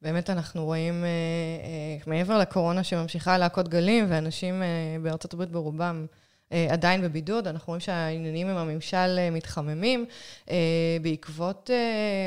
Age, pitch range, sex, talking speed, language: 20-39, 160-200 Hz, female, 105 wpm, Hebrew